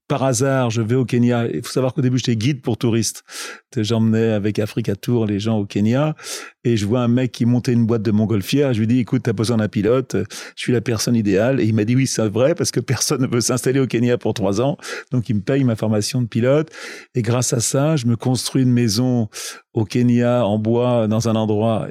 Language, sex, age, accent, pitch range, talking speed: French, male, 40-59, French, 115-130 Hz, 245 wpm